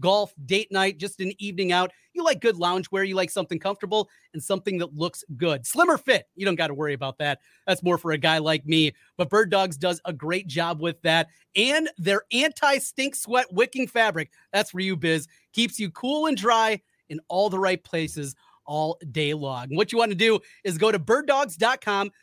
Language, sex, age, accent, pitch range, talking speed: English, male, 30-49, American, 165-215 Hz, 210 wpm